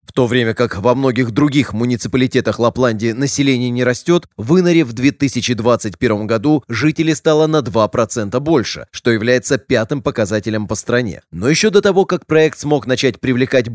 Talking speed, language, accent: 160 wpm, Russian, native